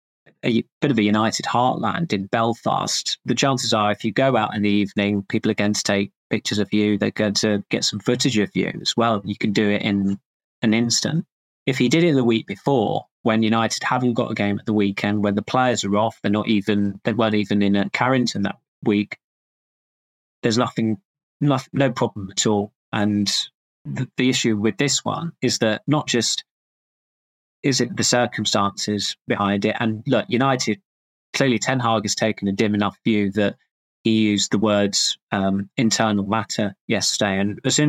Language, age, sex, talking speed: English, 20-39, male, 190 wpm